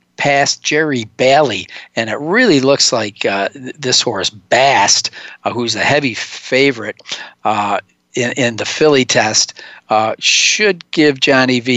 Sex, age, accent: male, 50-69, American